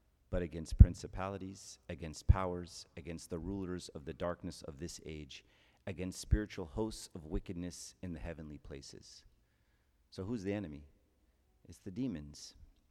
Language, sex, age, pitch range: English, male, 40-59, 75-100 Hz